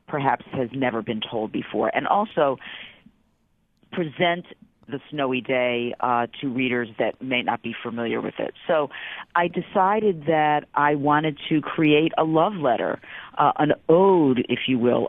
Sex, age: female, 40-59